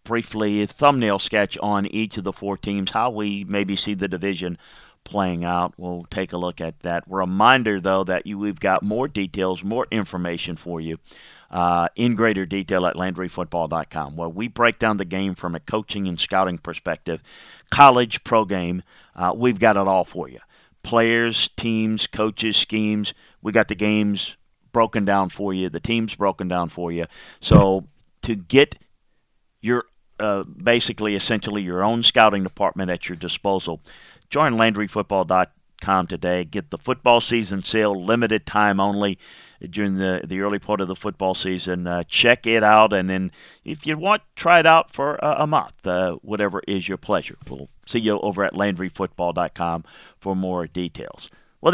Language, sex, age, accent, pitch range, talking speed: English, male, 40-59, American, 90-110 Hz, 170 wpm